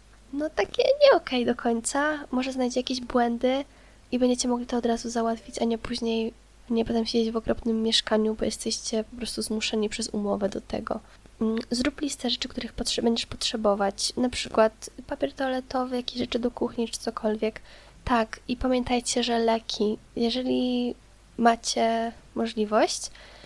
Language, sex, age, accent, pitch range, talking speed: Polish, female, 20-39, native, 225-250 Hz, 155 wpm